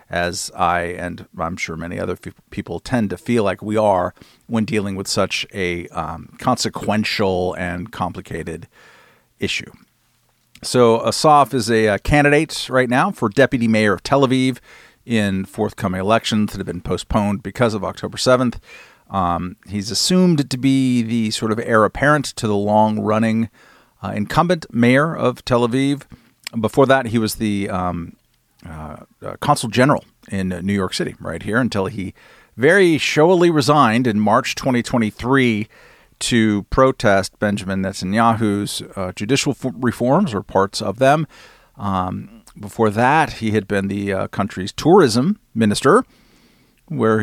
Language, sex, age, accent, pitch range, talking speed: English, male, 40-59, American, 100-130 Hz, 145 wpm